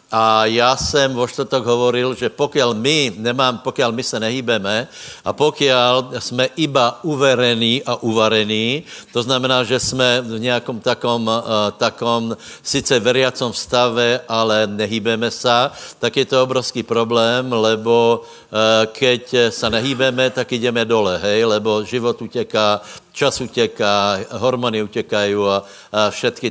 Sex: male